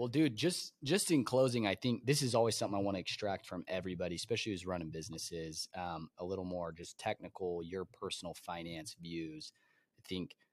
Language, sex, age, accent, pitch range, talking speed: English, male, 20-39, American, 90-115 Hz, 195 wpm